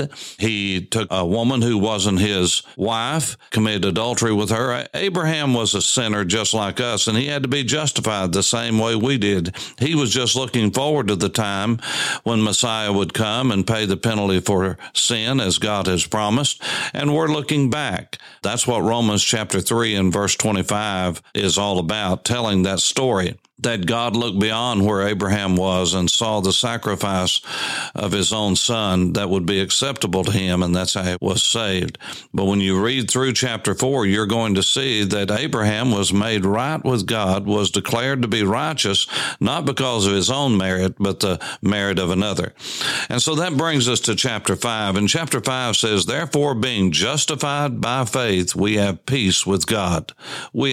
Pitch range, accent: 95-125 Hz, American